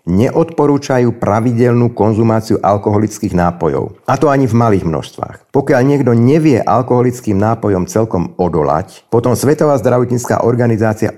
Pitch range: 95-125 Hz